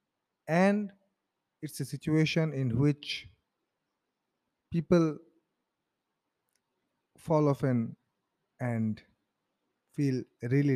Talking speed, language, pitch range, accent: 65 wpm, English, 115-160 Hz, Indian